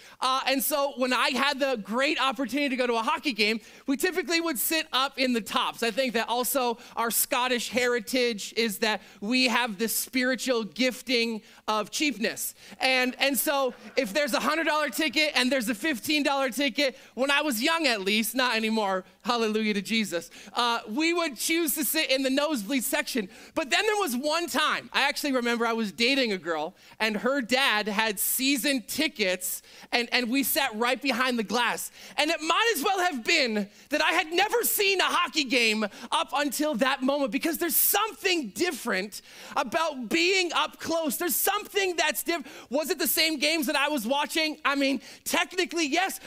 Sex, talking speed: male, 190 wpm